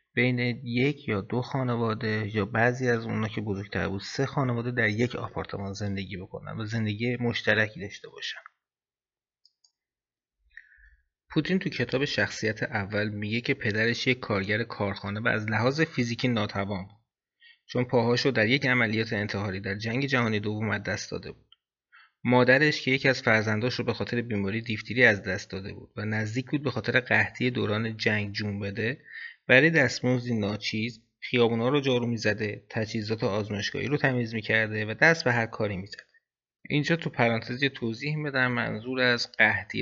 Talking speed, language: 160 wpm, Persian